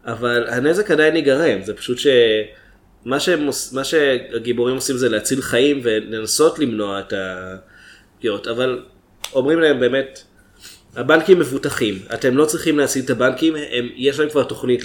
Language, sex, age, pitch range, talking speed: Hebrew, male, 20-39, 115-145 Hz, 135 wpm